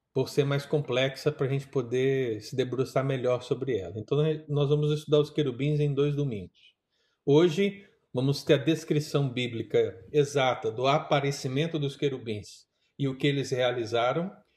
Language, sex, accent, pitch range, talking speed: Portuguese, male, Brazilian, 135-155 Hz, 155 wpm